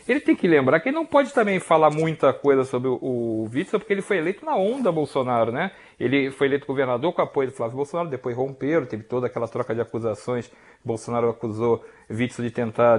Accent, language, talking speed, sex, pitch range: Brazilian, Portuguese, 215 wpm, male, 125-185 Hz